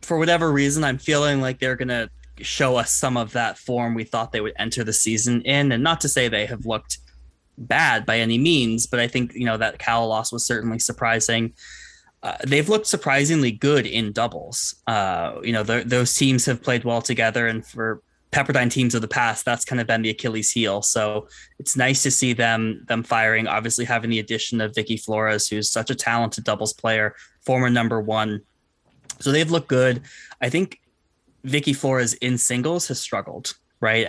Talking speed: 195 wpm